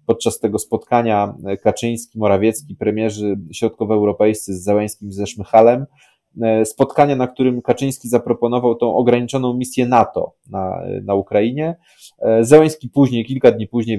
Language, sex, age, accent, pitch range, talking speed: Polish, male, 20-39, native, 105-125 Hz, 125 wpm